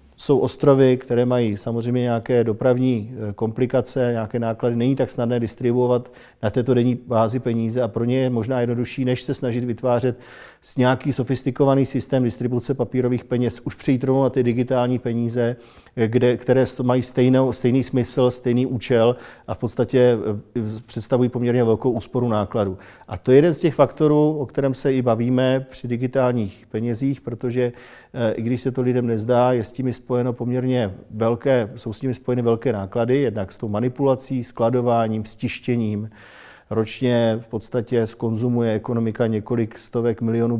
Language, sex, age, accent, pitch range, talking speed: Czech, male, 40-59, native, 115-125 Hz, 155 wpm